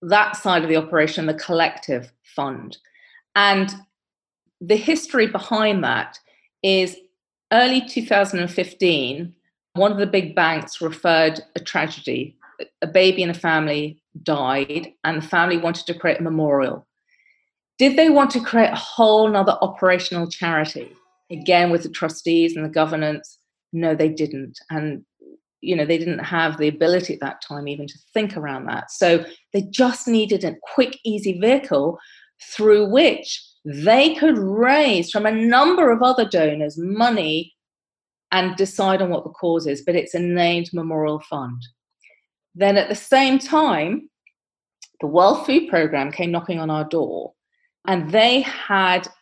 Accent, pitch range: British, 165-220 Hz